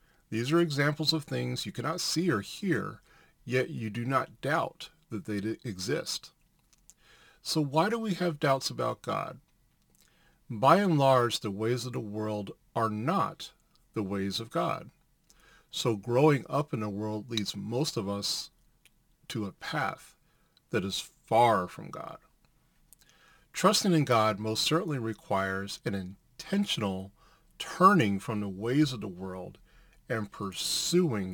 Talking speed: 145 wpm